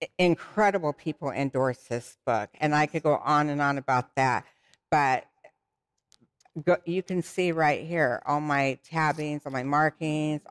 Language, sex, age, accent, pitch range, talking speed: English, female, 60-79, American, 150-195 Hz, 155 wpm